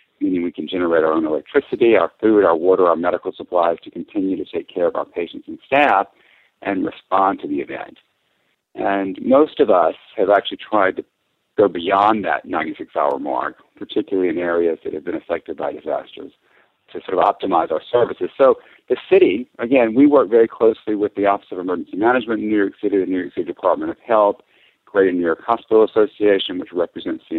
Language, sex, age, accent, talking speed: English, male, 50-69, American, 200 wpm